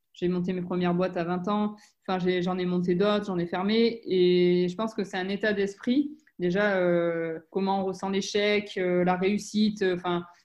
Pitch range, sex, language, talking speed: 180-215 Hz, female, French, 200 wpm